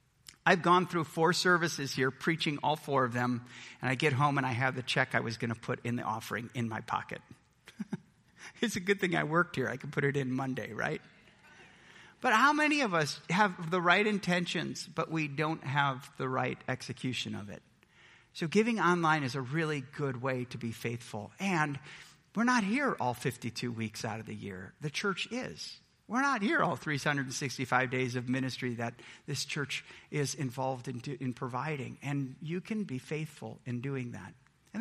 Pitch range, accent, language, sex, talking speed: 130-185 Hz, American, English, male, 195 wpm